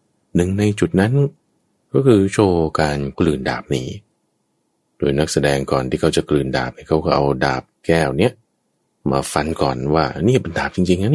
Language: Thai